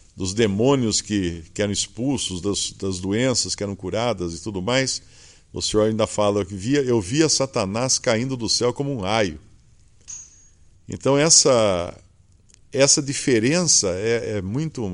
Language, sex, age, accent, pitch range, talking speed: English, male, 50-69, Brazilian, 90-125 Hz, 150 wpm